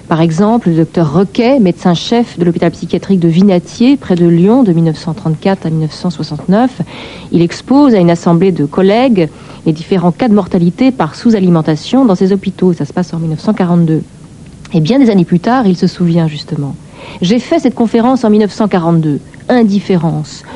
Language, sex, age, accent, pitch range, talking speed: French, female, 50-69, French, 165-210 Hz, 165 wpm